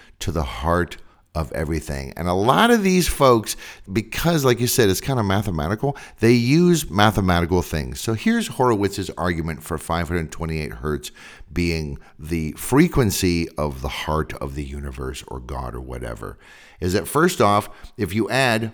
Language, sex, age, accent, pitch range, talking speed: English, male, 50-69, American, 80-115 Hz, 160 wpm